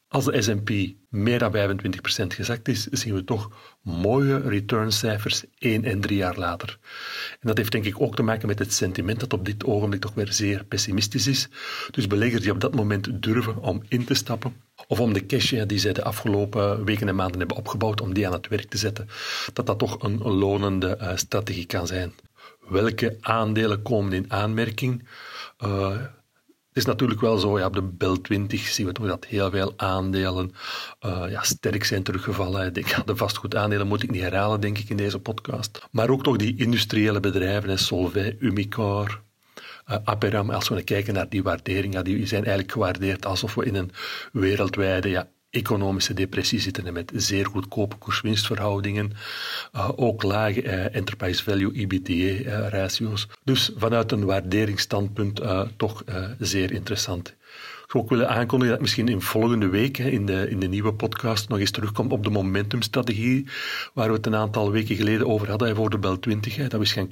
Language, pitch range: Dutch, 100-115 Hz